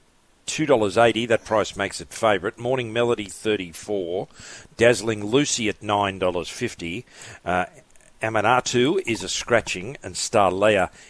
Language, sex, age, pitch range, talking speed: English, male, 50-69, 110-145 Hz, 115 wpm